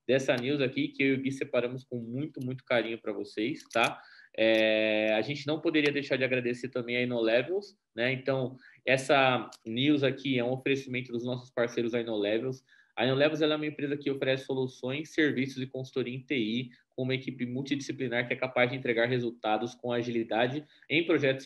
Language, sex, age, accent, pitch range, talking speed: Portuguese, male, 20-39, Brazilian, 120-145 Hz, 180 wpm